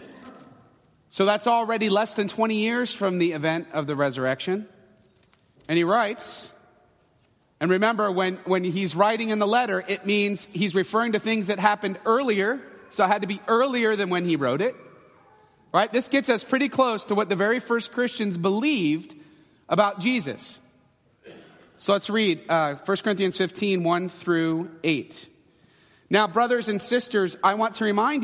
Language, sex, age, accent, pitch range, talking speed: English, male, 30-49, American, 165-215 Hz, 165 wpm